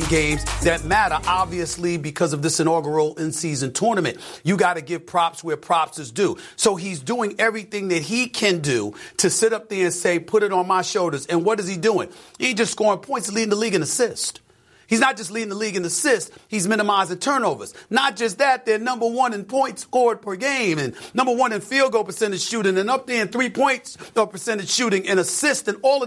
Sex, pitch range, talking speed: male, 190-260 Hz, 220 wpm